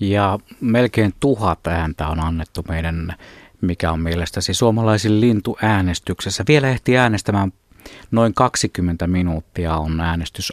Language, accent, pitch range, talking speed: Finnish, native, 90-115 Hz, 120 wpm